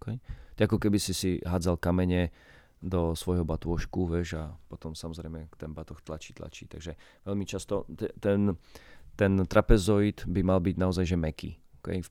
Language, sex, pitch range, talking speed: Slovak, male, 85-100 Hz, 145 wpm